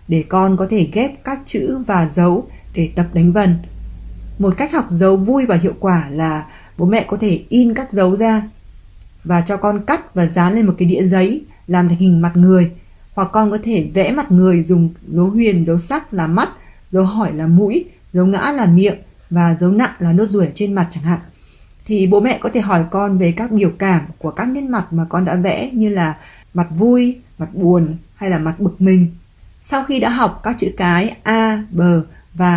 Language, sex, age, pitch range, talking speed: Vietnamese, female, 20-39, 170-210 Hz, 215 wpm